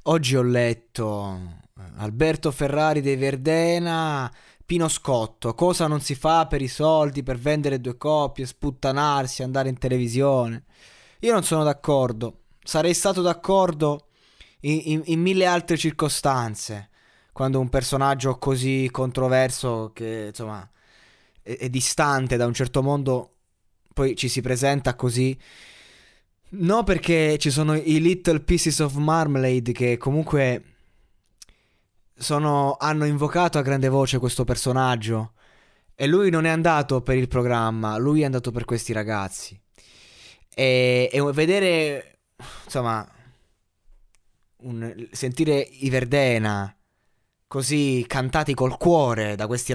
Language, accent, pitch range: Italian, native, 120-150 Hz